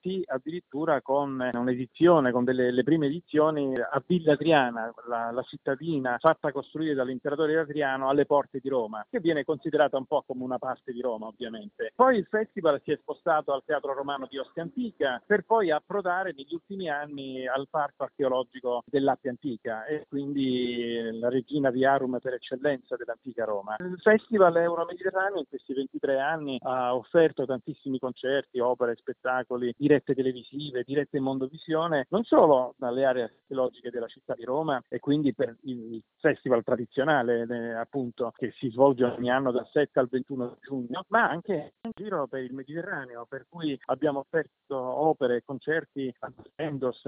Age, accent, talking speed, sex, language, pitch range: 40-59, native, 160 wpm, male, Italian, 130-155 Hz